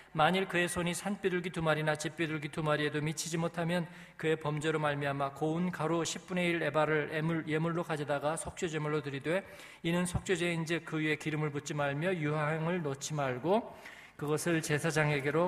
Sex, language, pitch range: male, Korean, 140-170 Hz